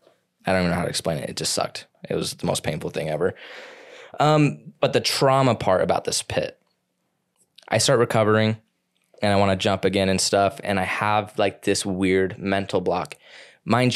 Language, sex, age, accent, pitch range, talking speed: English, male, 10-29, American, 95-120 Hz, 200 wpm